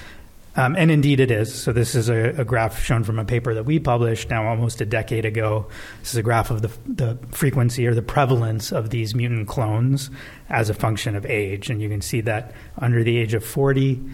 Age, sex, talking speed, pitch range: 30-49, male, 225 wpm, 110-130 Hz